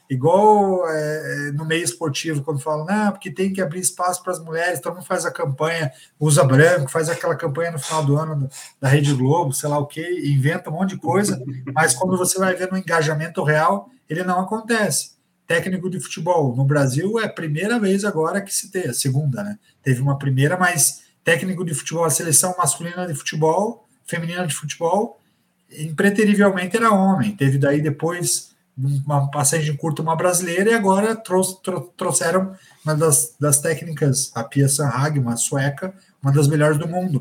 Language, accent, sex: Portuguese, Brazilian, male